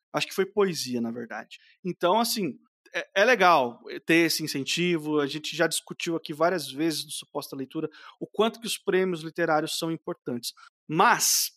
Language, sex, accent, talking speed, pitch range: Portuguese, male, Brazilian, 170 wpm, 160-210 Hz